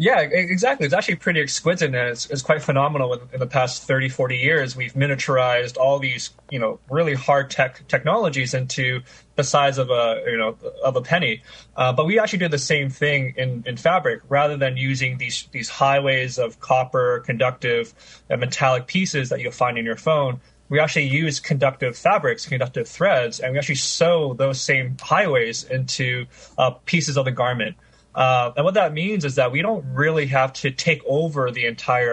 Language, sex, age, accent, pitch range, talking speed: English, male, 20-39, American, 125-150 Hz, 190 wpm